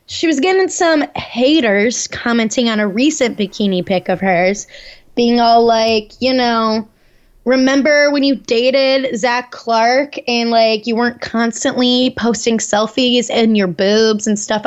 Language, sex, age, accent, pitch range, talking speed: English, female, 20-39, American, 220-250 Hz, 145 wpm